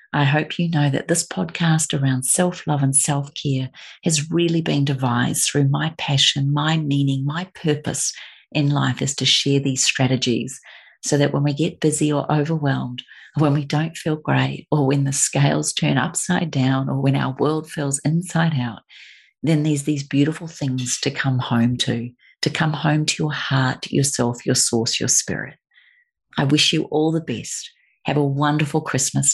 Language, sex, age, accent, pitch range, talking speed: English, female, 40-59, Australian, 130-150 Hz, 175 wpm